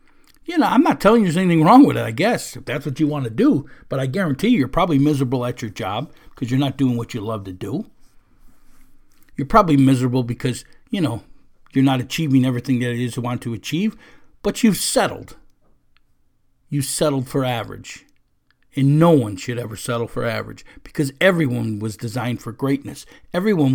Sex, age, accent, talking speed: male, 50-69, American, 195 wpm